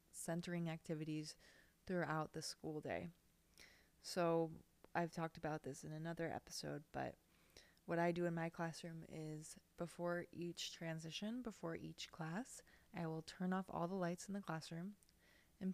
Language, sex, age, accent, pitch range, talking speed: English, female, 20-39, American, 165-185 Hz, 150 wpm